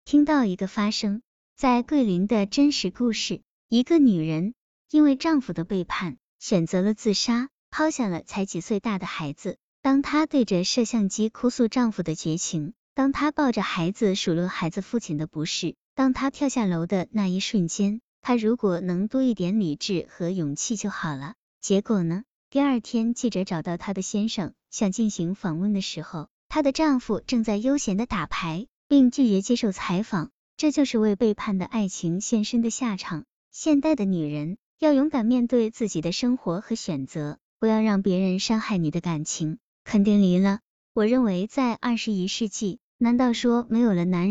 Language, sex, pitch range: Chinese, male, 180-240 Hz